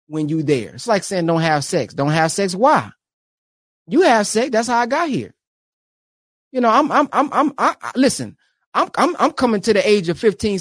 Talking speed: 220 wpm